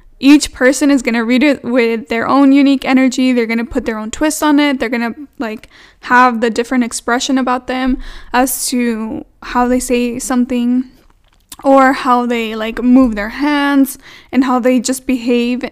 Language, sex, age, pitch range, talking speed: English, female, 10-29, 245-275 Hz, 185 wpm